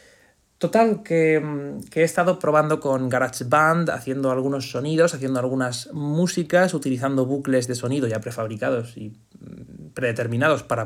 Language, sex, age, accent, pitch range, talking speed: Spanish, male, 20-39, Spanish, 125-175 Hz, 135 wpm